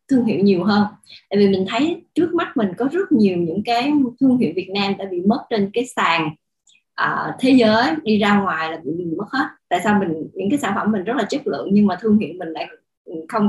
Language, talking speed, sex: Vietnamese, 240 wpm, female